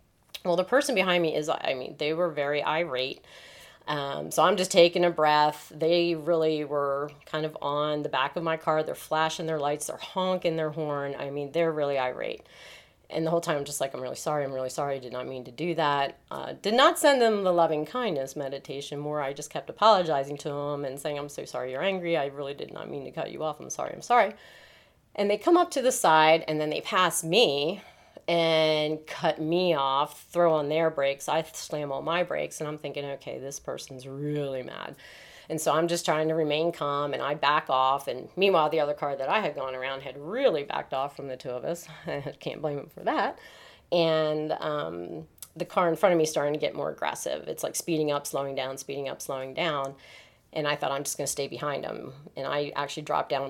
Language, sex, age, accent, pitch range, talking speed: English, female, 30-49, American, 140-165 Hz, 230 wpm